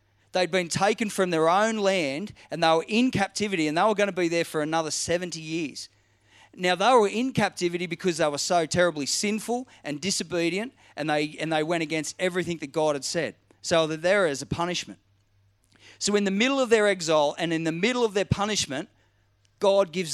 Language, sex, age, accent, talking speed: English, male, 40-59, Australian, 205 wpm